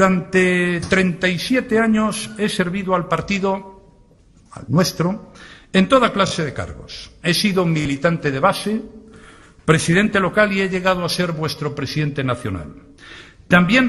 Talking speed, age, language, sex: 130 wpm, 60-79, Spanish, male